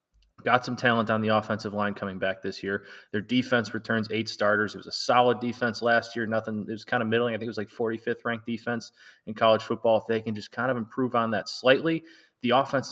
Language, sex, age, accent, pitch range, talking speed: English, male, 20-39, American, 110-120 Hz, 235 wpm